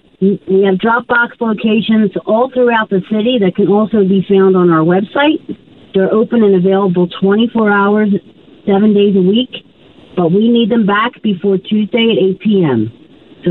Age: 50-69